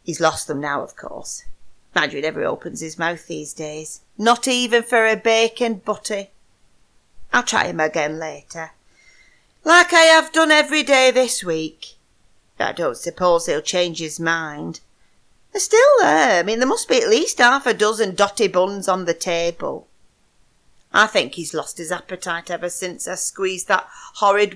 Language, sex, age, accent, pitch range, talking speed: English, female, 40-59, British, 175-255 Hz, 170 wpm